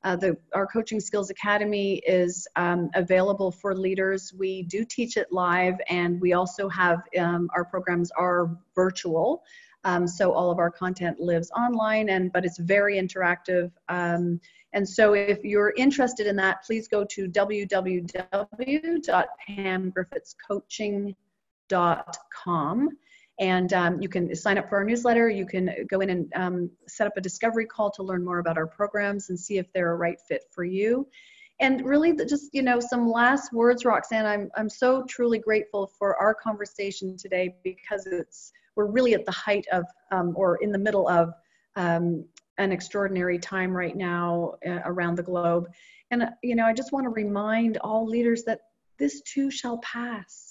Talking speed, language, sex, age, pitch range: 170 wpm, English, female, 30-49, 180-225 Hz